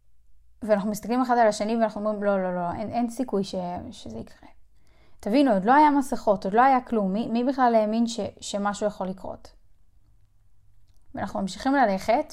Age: 10-29